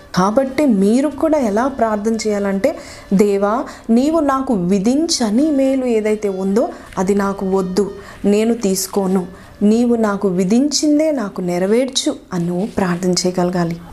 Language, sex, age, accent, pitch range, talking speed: Telugu, female, 30-49, native, 185-235 Hz, 115 wpm